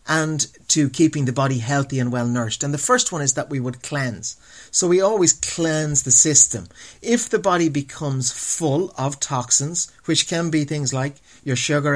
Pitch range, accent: 125-160 Hz, Irish